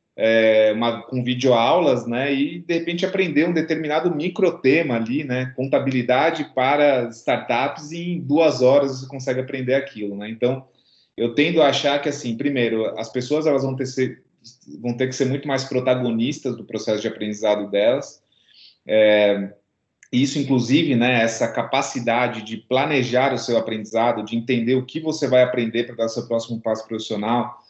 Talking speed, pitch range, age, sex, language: 170 wpm, 115-145 Hz, 20-39, male, Portuguese